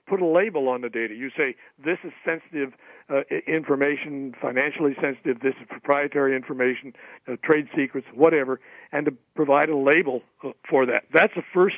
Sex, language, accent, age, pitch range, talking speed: male, English, American, 60-79, 130-160 Hz, 170 wpm